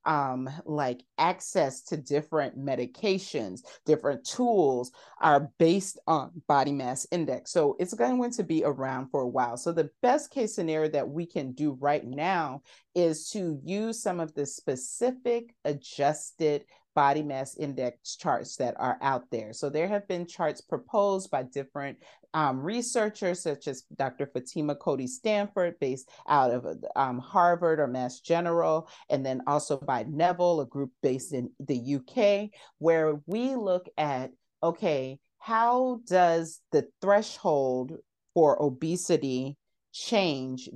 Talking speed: 145 wpm